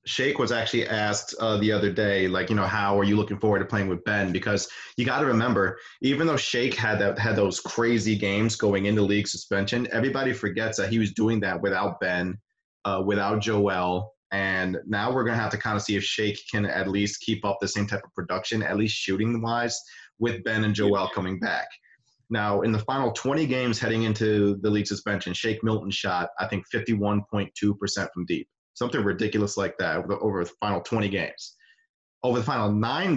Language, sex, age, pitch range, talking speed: English, male, 30-49, 100-115 Hz, 205 wpm